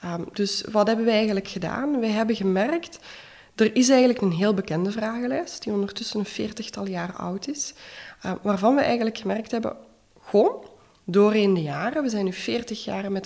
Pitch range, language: 195-250 Hz, Dutch